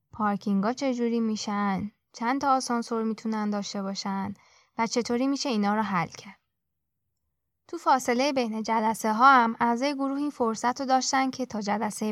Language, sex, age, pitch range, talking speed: Persian, female, 10-29, 200-245 Hz, 155 wpm